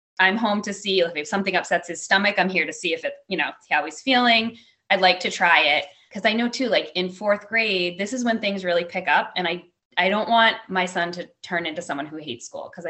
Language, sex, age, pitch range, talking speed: English, female, 20-39, 155-200 Hz, 260 wpm